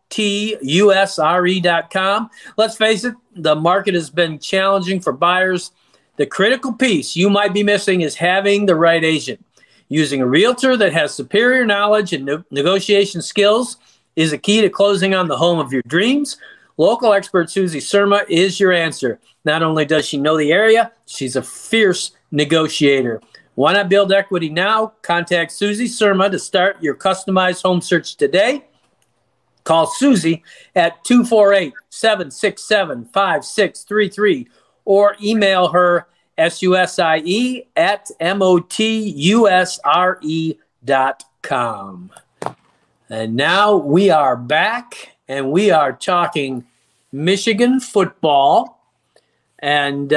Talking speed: 120 wpm